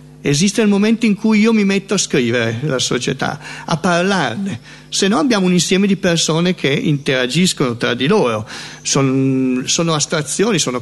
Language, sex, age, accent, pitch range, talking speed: Italian, male, 50-69, native, 125-170 Hz, 165 wpm